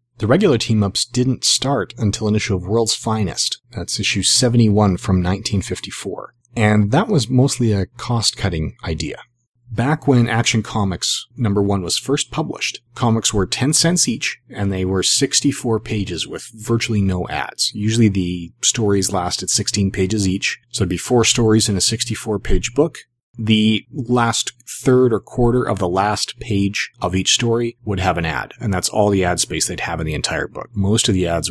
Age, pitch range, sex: 30-49, 95-120 Hz, male